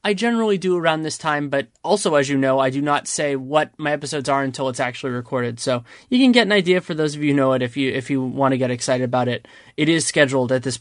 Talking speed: 285 wpm